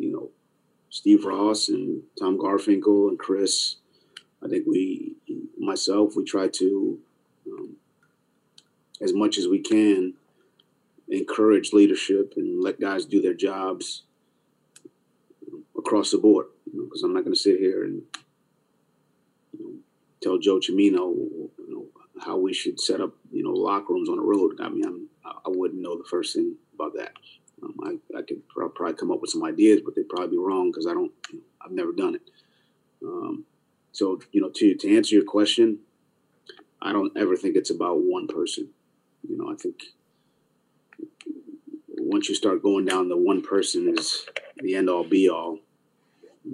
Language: English